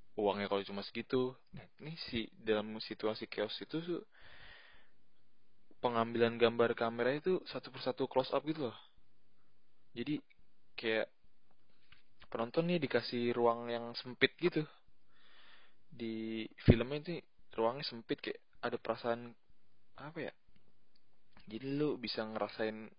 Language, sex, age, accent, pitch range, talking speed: Indonesian, male, 20-39, native, 105-120 Hz, 115 wpm